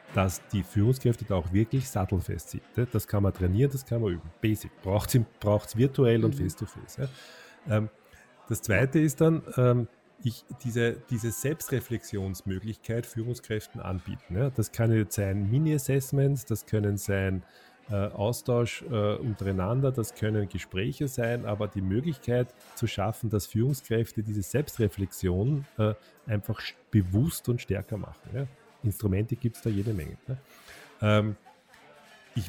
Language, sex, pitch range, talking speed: German, male, 105-125 Hz, 125 wpm